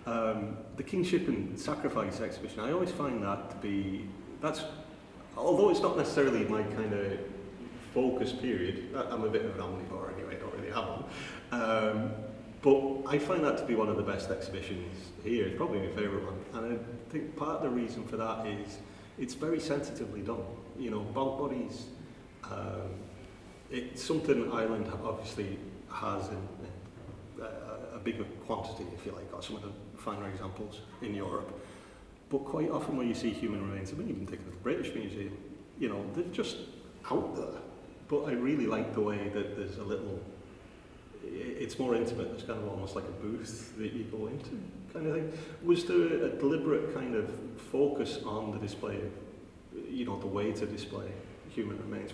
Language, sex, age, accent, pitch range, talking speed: English, male, 30-49, British, 95-115 Hz, 180 wpm